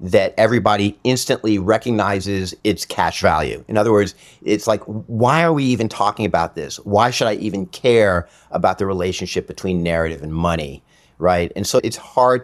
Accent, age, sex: American, 50-69, male